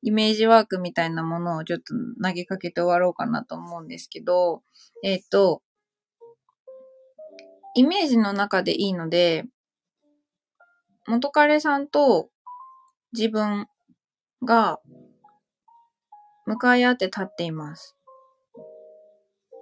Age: 20-39